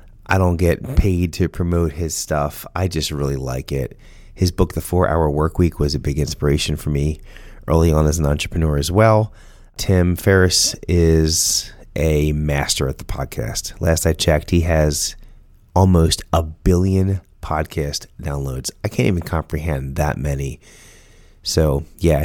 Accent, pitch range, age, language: American, 80-100 Hz, 30-49, English